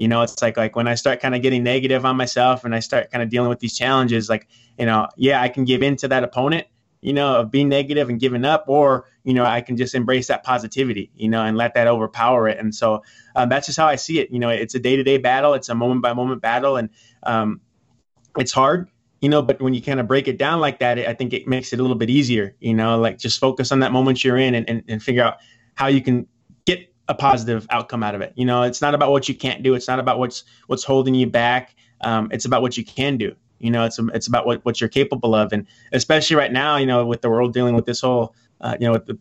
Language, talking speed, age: English, 280 wpm, 20-39